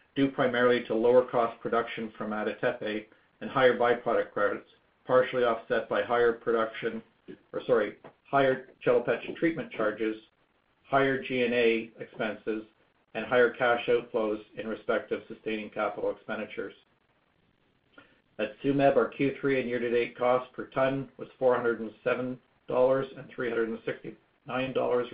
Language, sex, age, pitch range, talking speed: English, male, 50-69, 110-125 Hz, 115 wpm